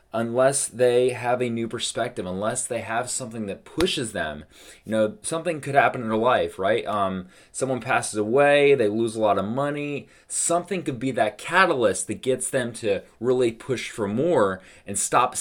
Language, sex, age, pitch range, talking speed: English, male, 20-39, 115-145 Hz, 185 wpm